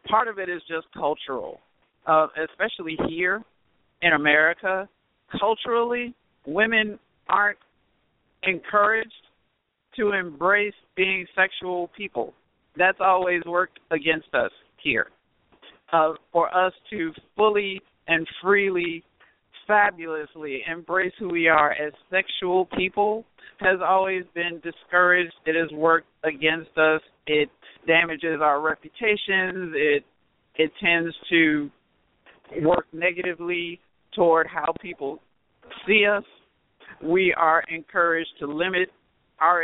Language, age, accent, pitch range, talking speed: English, 50-69, American, 165-190 Hz, 105 wpm